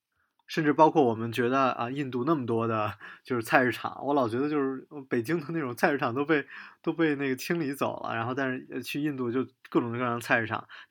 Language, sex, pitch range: Chinese, male, 110-135 Hz